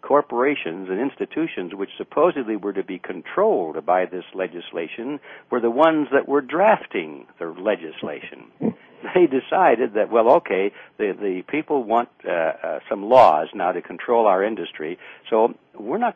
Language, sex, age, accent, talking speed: English, male, 60-79, American, 150 wpm